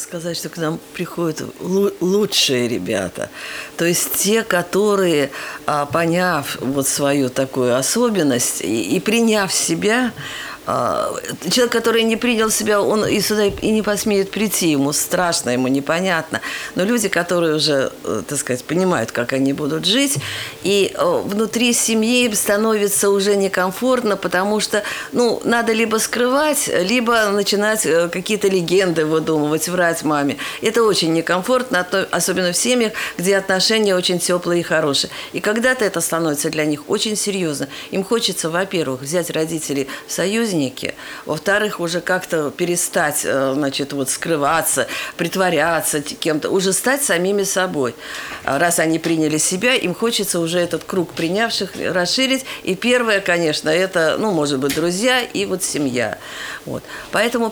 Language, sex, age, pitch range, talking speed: Russian, female, 50-69, 160-215 Hz, 130 wpm